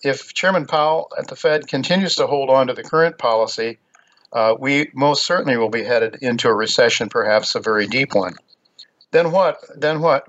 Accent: American